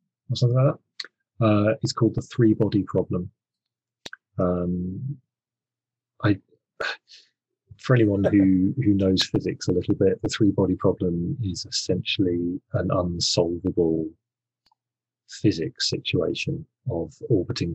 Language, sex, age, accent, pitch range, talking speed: English, male, 30-49, British, 90-120 Hz, 110 wpm